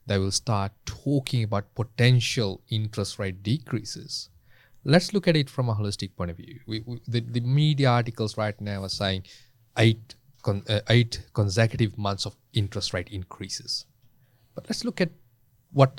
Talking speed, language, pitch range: 165 wpm, English, 105-135 Hz